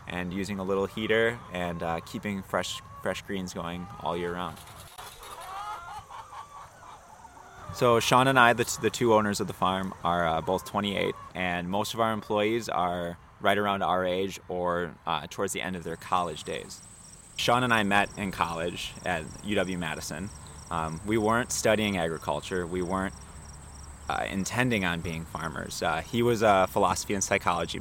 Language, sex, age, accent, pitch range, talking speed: English, male, 20-39, American, 85-105 Hz, 165 wpm